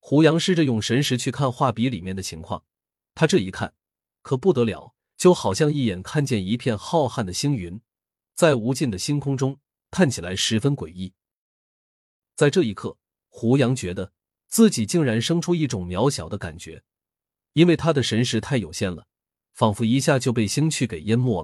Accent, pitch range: native, 100-145 Hz